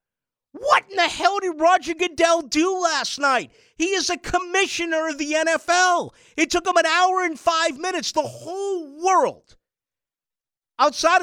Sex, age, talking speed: male, 50-69, 155 wpm